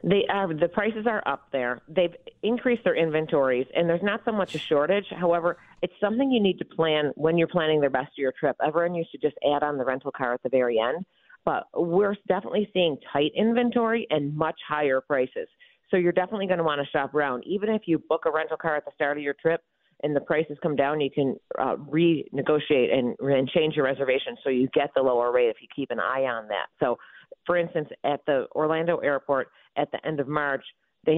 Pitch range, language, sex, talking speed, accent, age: 135-170 Hz, English, female, 225 wpm, American, 40-59